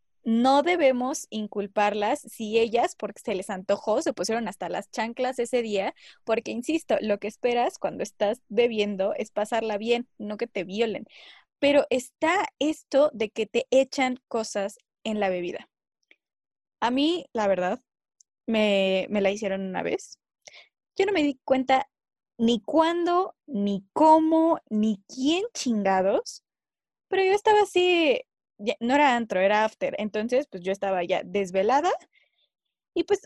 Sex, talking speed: female, 145 wpm